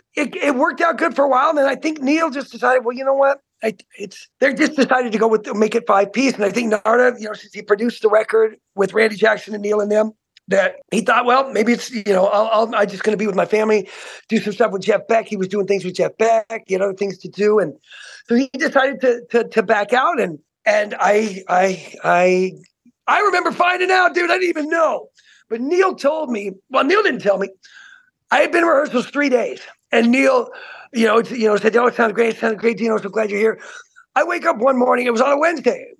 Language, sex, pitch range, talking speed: English, male, 215-315 Hz, 255 wpm